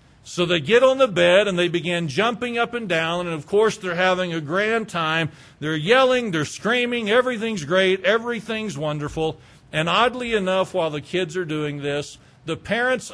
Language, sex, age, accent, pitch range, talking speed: English, male, 50-69, American, 150-195 Hz, 185 wpm